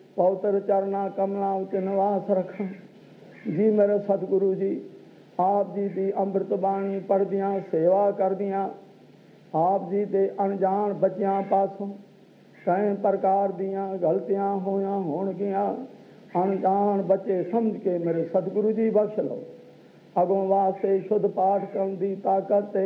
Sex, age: male, 50-69